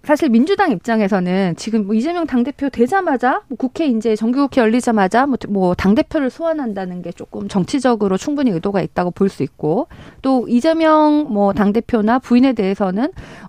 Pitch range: 200-275 Hz